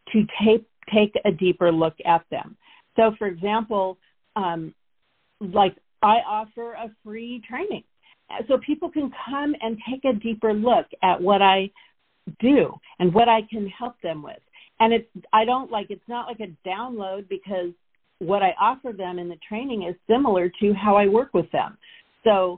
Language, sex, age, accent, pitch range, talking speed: English, female, 50-69, American, 180-225 Hz, 175 wpm